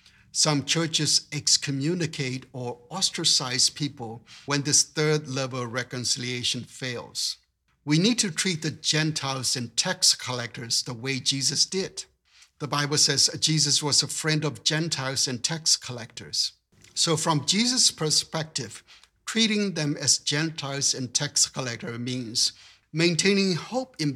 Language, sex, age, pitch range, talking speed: English, male, 60-79, 130-155 Hz, 125 wpm